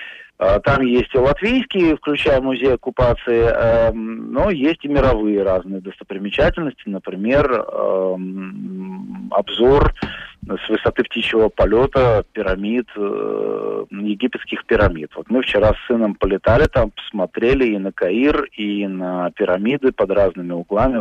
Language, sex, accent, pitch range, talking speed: Russian, male, native, 100-135 Hz, 120 wpm